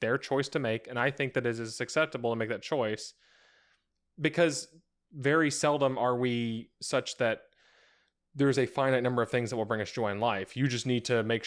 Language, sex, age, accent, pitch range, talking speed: English, male, 20-39, American, 110-130 Hz, 210 wpm